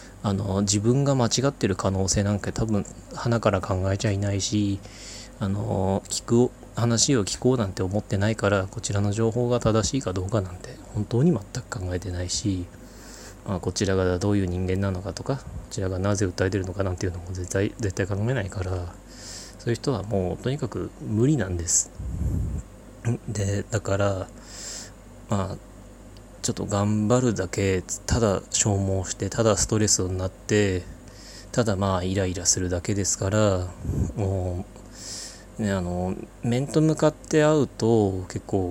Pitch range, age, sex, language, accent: 95-115 Hz, 20-39, male, Japanese, native